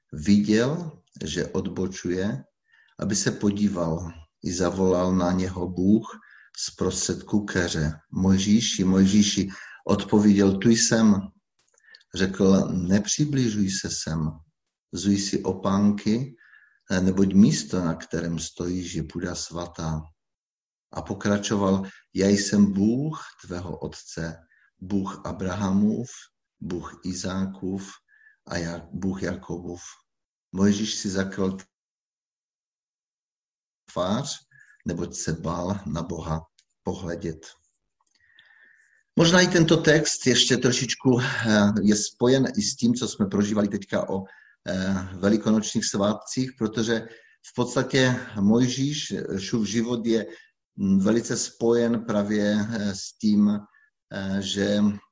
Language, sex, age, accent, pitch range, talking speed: Czech, male, 50-69, native, 95-115 Hz, 95 wpm